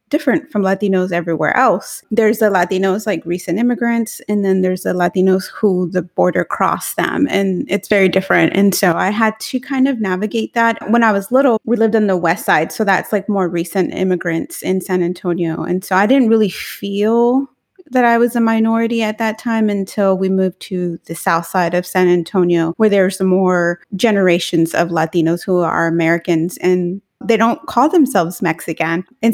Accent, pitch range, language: American, 180-220 Hz, English